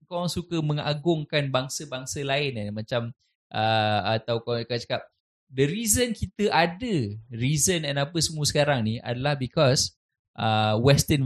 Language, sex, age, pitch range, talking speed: Malay, male, 20-39, 120-150 Hz, 140 wpm